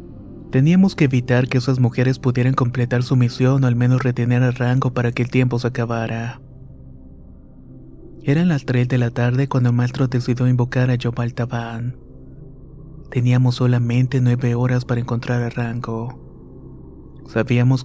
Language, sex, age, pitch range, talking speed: Spanish, male, 30-49, 115-125 Hz, 150 wpm